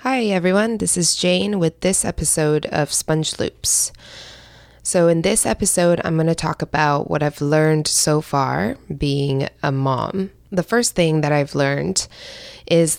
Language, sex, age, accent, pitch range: Korean, female, 20-39, American, 140-175 Hz